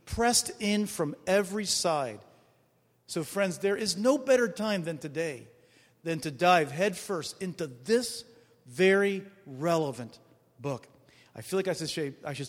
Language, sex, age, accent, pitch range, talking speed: English, male, 40-59, American, 135-190 Hz, 135 wpm